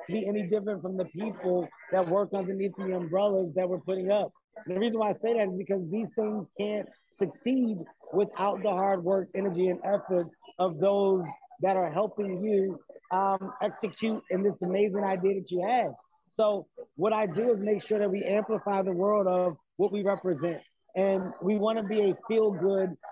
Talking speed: 190 wpm